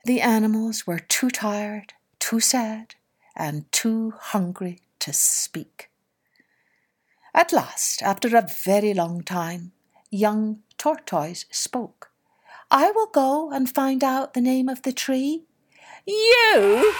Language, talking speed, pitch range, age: English, 120 wpm, 175-255 Hz, 60-79